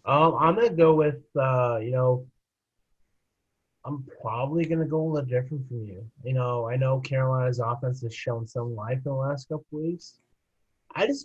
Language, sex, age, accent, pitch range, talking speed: English, male, 30-49, American, 120-150 Hz, 195 wpm